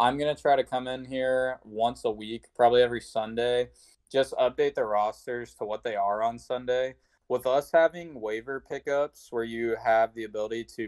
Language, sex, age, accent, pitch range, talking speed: English, male, 20-39, American, 105-130 Hz, 195 wpm